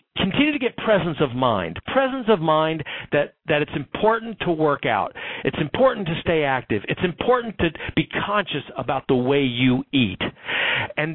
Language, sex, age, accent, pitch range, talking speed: English, male, 50-69, American, 125-180 Hz, 170 wpm